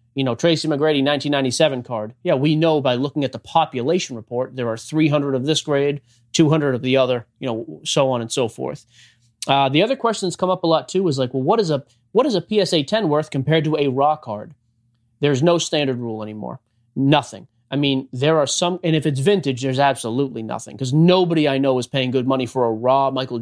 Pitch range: 120-155 Hz